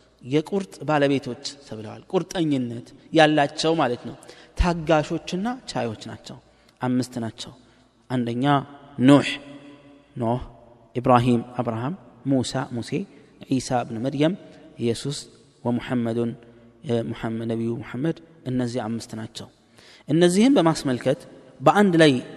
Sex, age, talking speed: male, 30-49, 95 wpm